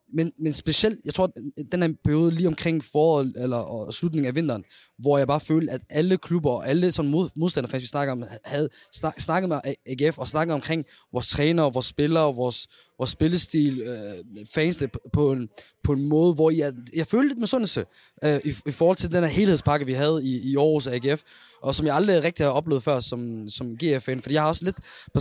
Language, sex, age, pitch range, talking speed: Danish, male, 20-39, 125-155 Hz, 215 wpm